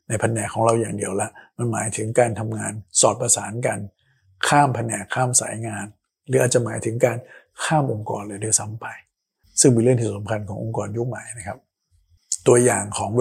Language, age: Thai, 60-79